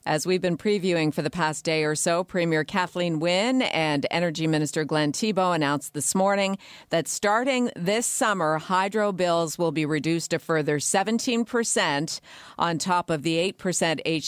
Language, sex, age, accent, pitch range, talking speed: English, female, 50-69, American, 155-205 Hz, 160 wpm